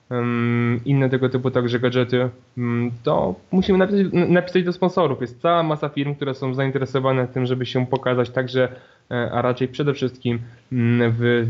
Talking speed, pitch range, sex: 145 wpm, 120-135 Hz, male